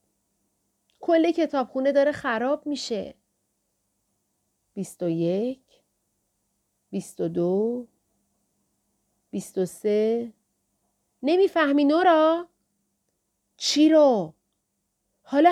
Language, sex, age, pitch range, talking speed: Persian, female, 40-59, 205-290 Hz, 50 wpm